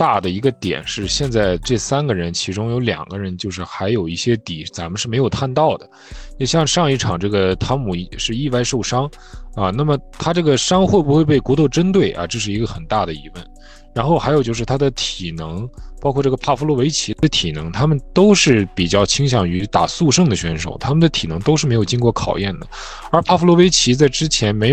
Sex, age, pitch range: male, 20-39, 90-145 Hz